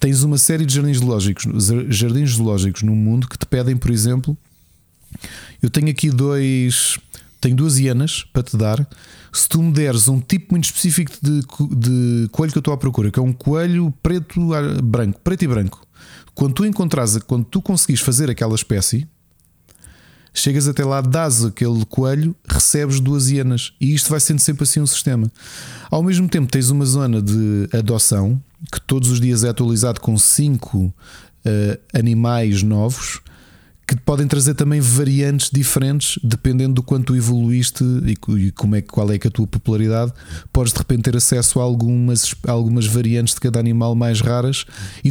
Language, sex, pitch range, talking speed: Portuguese, male, 115-145 Hz, 175 wpm